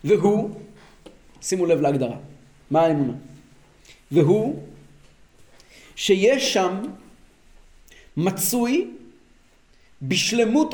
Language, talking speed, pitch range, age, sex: Hebrew, 60 wpm, 175-250 Hz, 40-59, male